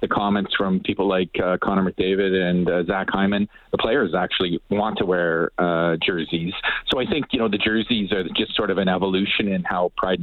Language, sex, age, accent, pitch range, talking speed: English, male, 40-59, Canadian, 90-105 Hz, 210 wpm